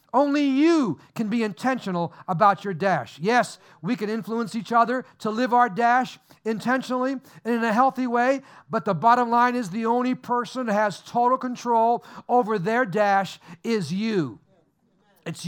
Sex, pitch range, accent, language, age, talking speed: male, 180-245 Hz, American, English, 50-69, 165 wpm